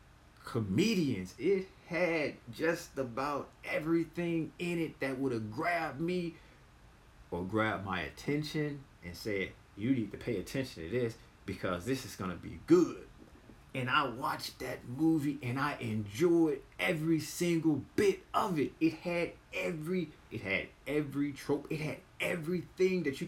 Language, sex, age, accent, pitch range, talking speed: English, male, 30-49, American, 120-170 Hz, 150 wpm